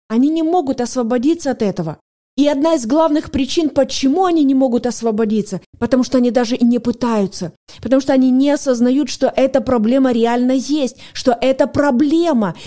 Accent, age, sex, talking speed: native, 20-39, female, 170 wpm